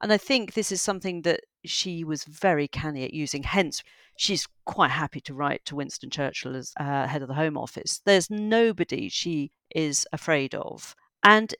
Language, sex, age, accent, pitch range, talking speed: English, female, 50-69, British, 145-185 Hz, 185 wpm